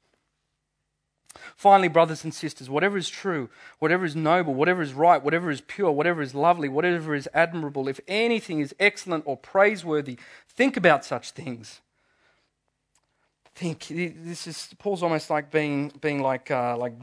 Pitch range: 135-200 Hz